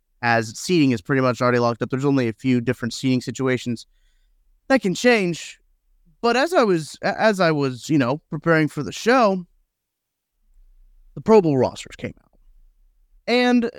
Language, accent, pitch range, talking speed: English, American, 125-175 Hz, 165 wpm